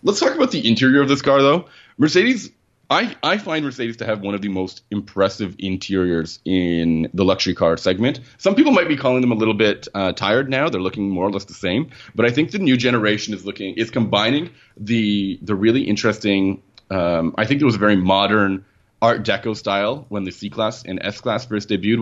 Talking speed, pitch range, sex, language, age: 215 wpm, 95-120 Hz, male, English, 30-49